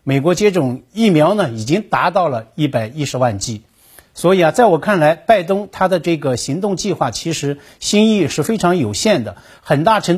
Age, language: 50-69, Chinese